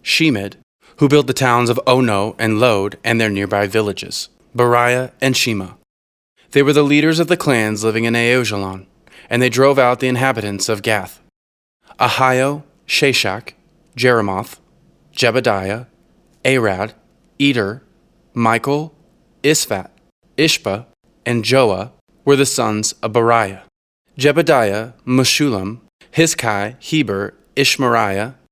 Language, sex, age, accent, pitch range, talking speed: English, male, 20-39, American, 110-140 Hz, 115 wpm